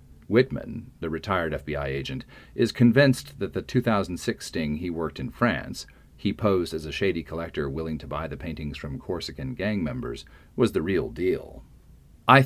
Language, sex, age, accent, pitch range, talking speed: English, male, 40-59, American, 75-110 Hz, 170 wpm